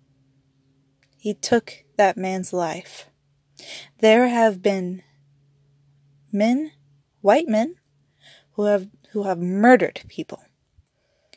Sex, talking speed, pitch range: female, 90 wpm, 125-195 Hz